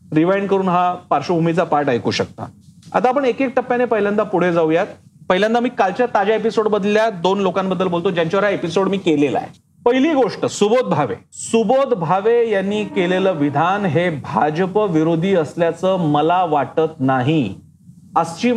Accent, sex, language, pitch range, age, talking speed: native, male, Marathi, 170-225 Hz, 40-59, 150 wpm